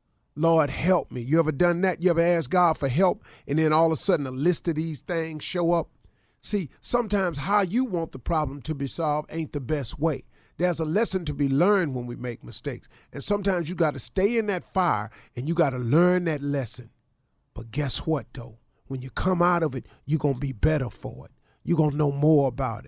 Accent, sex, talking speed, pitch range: American, male, 235 wpm, 135-190 Hz